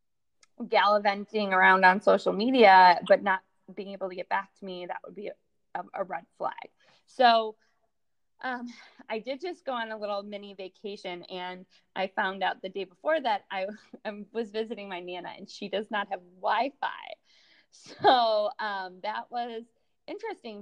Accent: American